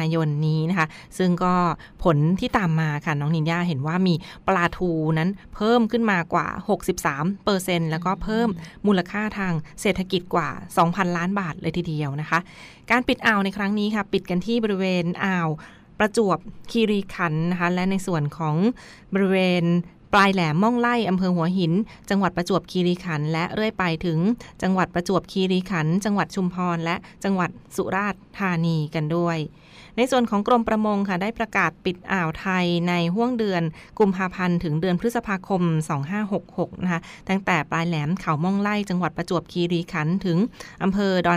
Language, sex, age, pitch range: Thai, female, 20-39, 170-195 Hz